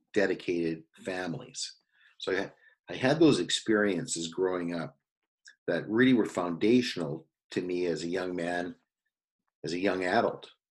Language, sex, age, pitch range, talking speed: English, male, 50-69, 90-120 Hz, 135 wpm